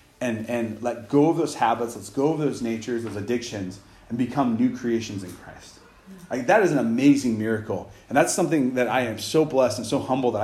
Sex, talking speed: male, 220 wpm